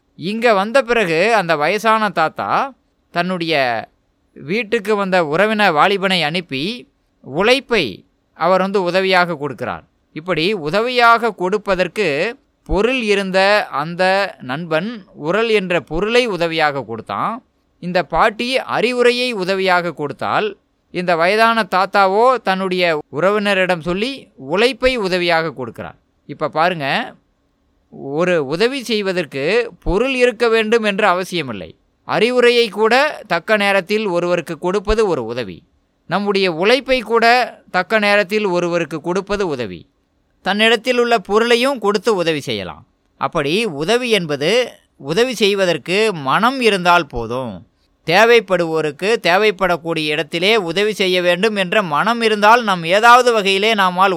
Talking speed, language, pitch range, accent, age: 105 wpm, Tamil, 175-225 Hz, native, 20-39